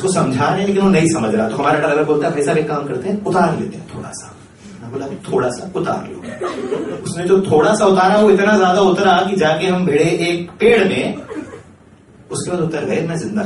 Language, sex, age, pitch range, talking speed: Hindi, male, 30-49, 160-210 Hz, 225 wpm